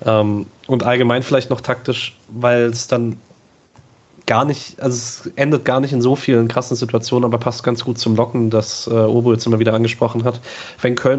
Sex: male